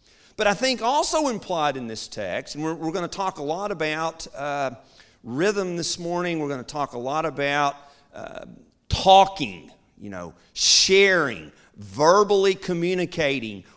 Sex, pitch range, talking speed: male, 145-195 Hz, 145 wpm